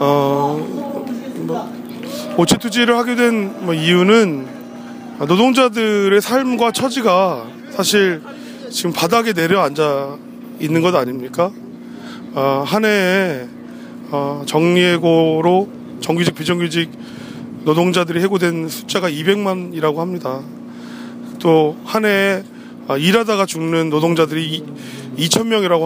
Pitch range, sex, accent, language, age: 160-225 Hz, male, native, Korean, 30-49